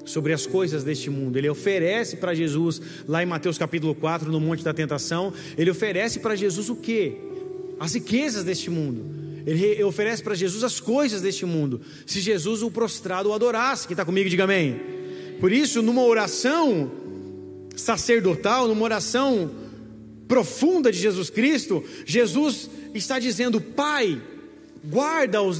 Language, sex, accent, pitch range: Portuguese, male, Brazilian, 195-295 Hz